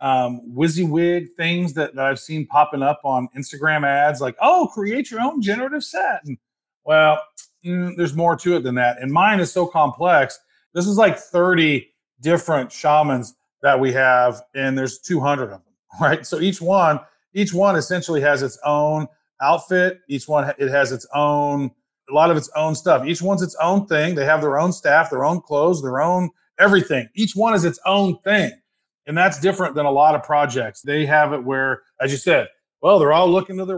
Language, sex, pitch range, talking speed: English, male, 145-185 Hz, 200 wpm